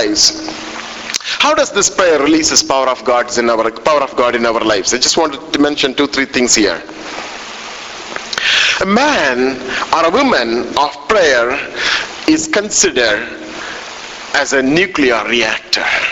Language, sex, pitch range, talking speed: English, male, 130-200 Hz, 145 wpm